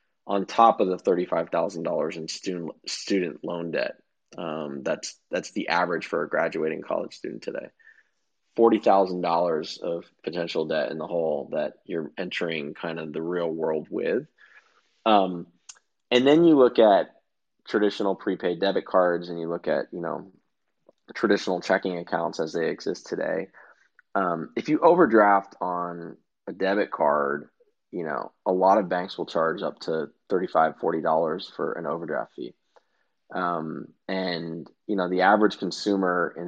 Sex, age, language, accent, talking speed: male, 20-39, English, American, 160 wpm